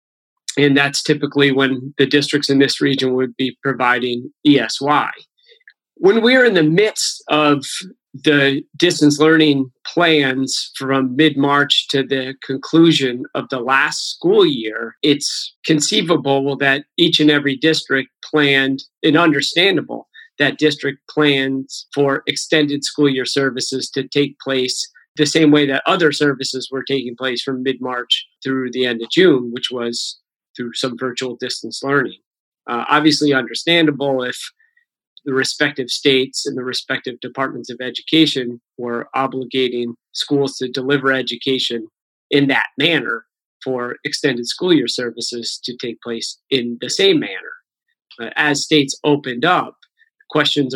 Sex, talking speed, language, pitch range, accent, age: male, 135 wpm, English, 130-150 Hz, American, 40-59